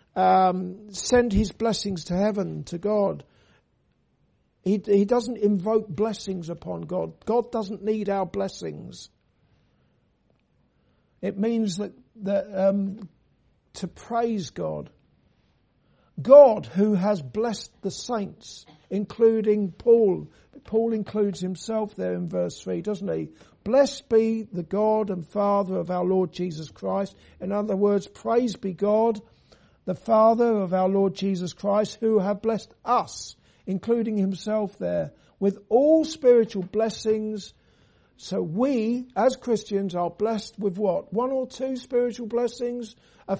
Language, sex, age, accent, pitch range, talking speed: English, male, 50-69, British, 190-225 Hz, 130 wpm